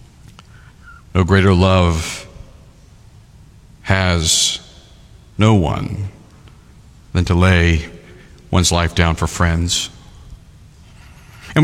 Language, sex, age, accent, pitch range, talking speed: English, male, 50-69, American, 100-125 Hz, 75 wpm